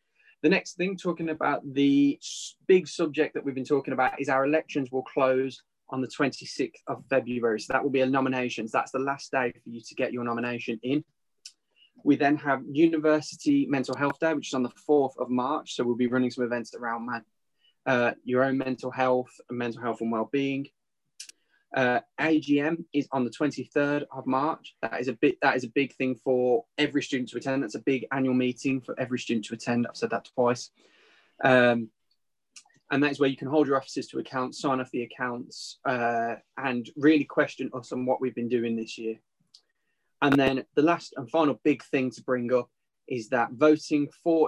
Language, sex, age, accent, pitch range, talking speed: English, male, 20-39, British, 125-145 Hz, 200 wpm